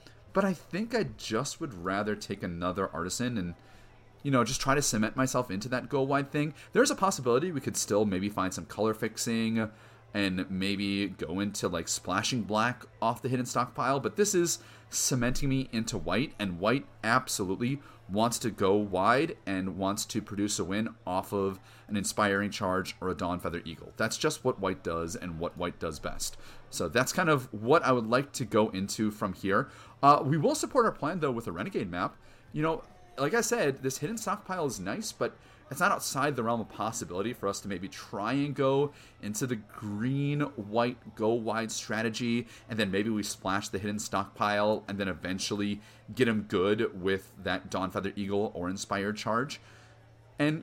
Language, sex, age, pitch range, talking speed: English, male, 30-49, 100-135 Hz, 190 wpm